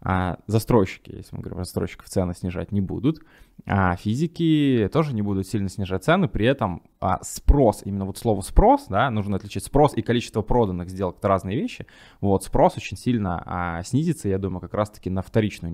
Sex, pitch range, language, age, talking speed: male, 90-110 Hz, Russian, 20-39, 170 wpm